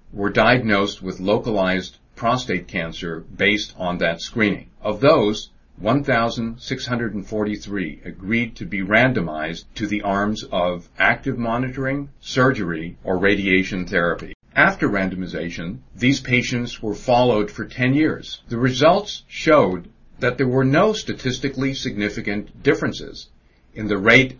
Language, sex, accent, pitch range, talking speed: English, male, American, 90-125 Hz, 120 wpm